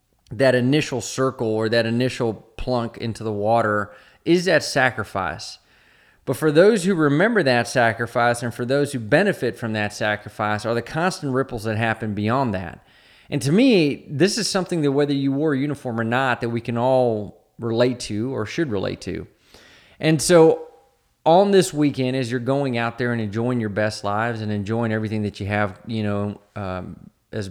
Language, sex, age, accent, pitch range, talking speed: English, male, 30-49, American, 110-145 Hz, 185 wpm